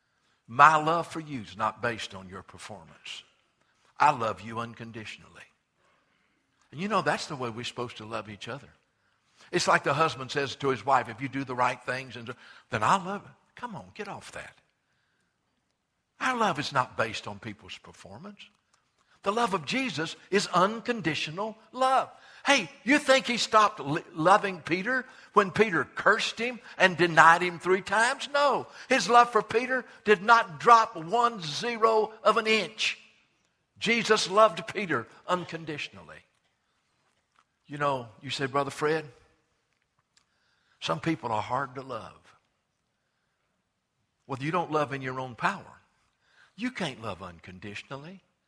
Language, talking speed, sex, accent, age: English, 150 wpm, male, American, 60-79